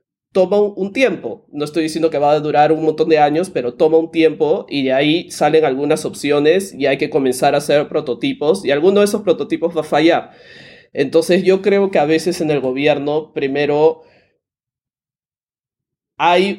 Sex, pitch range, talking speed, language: male, 150-180 Hz, 180 wpm, Spanish